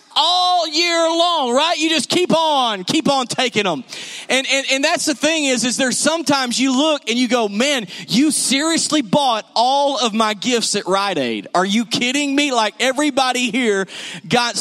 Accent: American